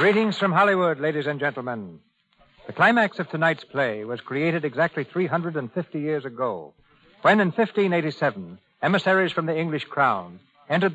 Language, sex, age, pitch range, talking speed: English, male, 60-79, 145-180 Hz, 145 wpm